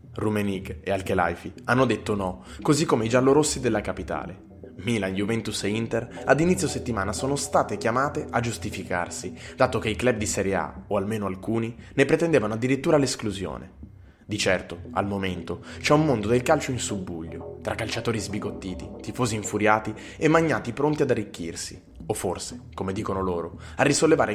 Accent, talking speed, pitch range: native, 165 wpm, 95-120 Hz